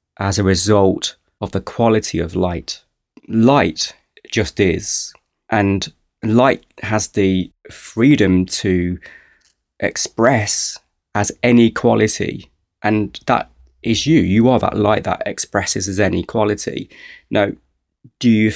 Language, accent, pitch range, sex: English, British, 85-105 Hz, male